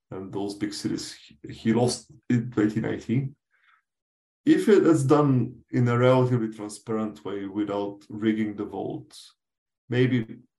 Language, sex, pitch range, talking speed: English, male, 105-120 Hz, 125 wpm